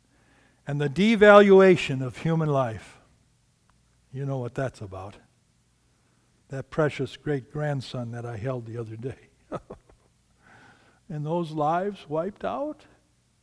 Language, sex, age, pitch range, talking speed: English, male, 60-79, 145-225 Hz, 110 wpm